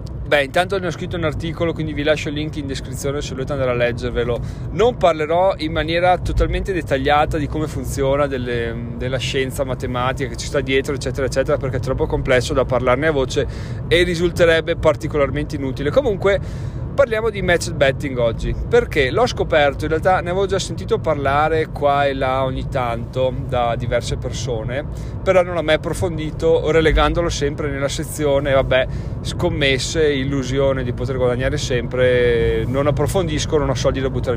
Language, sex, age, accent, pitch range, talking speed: Italian, male, 30-49, native, 125-155 Hz, 170 wpm